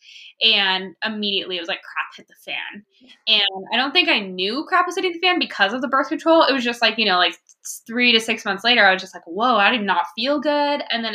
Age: 10-29